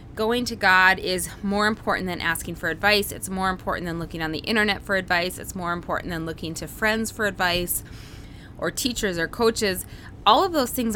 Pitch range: 165-215 Hz